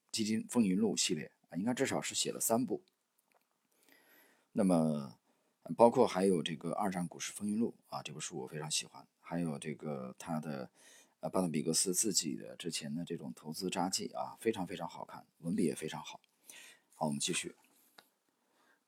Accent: native